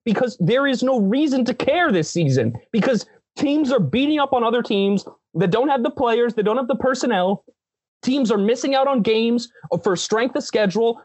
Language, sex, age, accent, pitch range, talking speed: English, male, 30-49, American, 160-245 Hz, 200 wpm